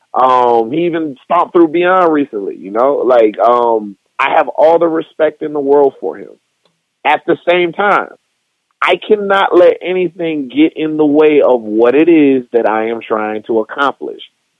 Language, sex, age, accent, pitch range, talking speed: English, male, 30-49, American, 140-210 Hz, 175 wpm